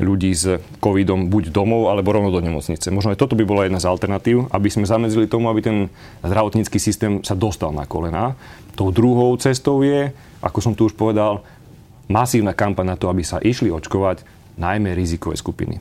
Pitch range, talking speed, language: 95-120 Hz, 185 wpm, Slovak